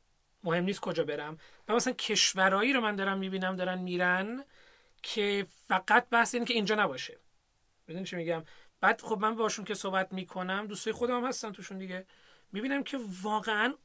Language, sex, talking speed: Persian, male, 170 wpm